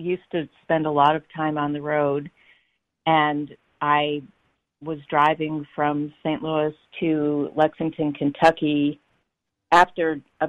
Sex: female